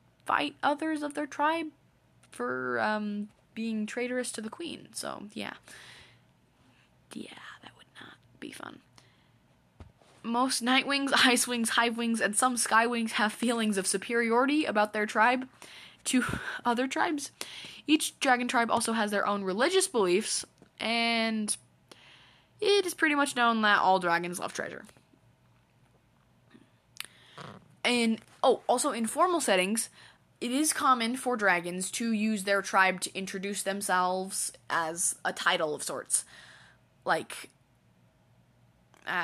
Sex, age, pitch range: female, 10-29, 195-250 Hz